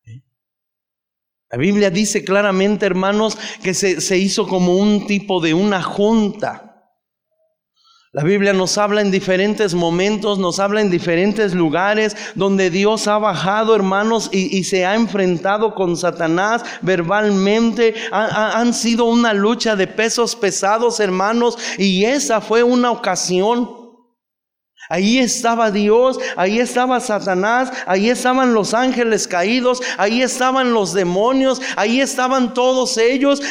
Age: 30-49